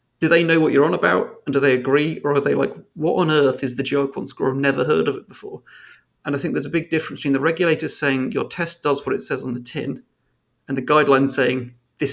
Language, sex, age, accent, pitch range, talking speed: English, male, 30-49, British, 130-155 Hz, 260 wpm